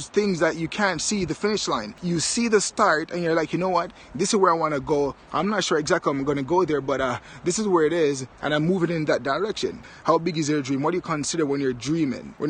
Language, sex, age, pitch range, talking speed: English, male, 20-39, 155-195 Hz, 285 wpm